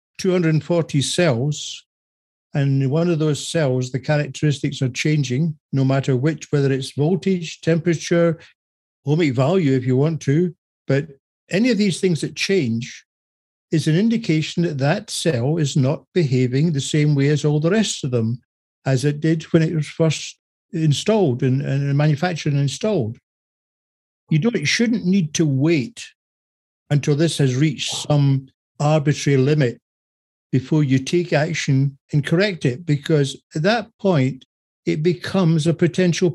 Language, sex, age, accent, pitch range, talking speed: English, male, 60-79, British, 135-165 Hz, 150 wpm